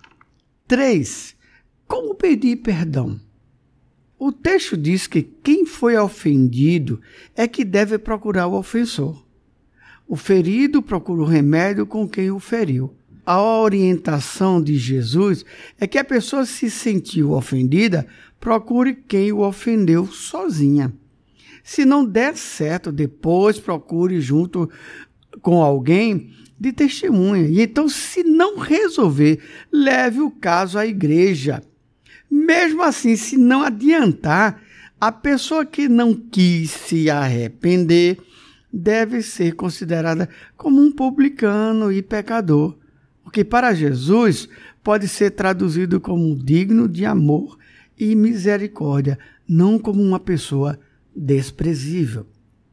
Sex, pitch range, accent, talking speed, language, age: male, 155-235 Hz, Brazilian, 115 wpm, Portuguese, 60-79